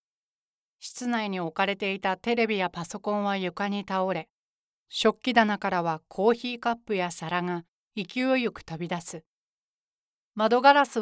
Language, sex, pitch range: Japanese, female, 185-230 Hz